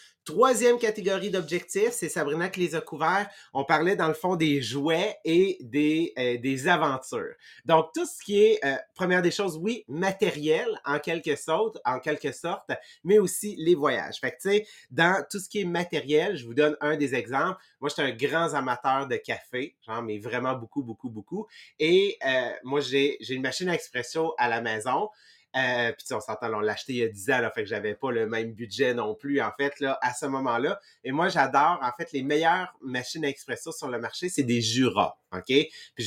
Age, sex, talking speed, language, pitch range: 30-49, male, 220 wpm, English, 130-175 Hz